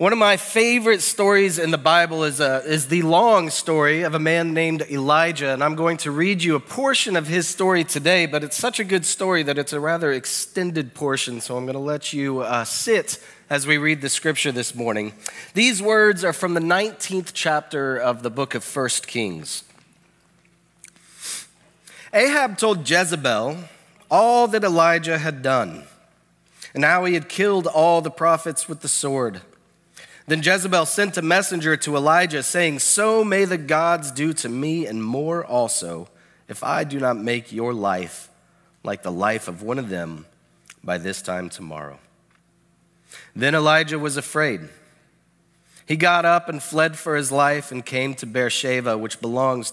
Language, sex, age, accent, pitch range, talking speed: English, male, 30-49, American, 135-175 Hz, 175 wpm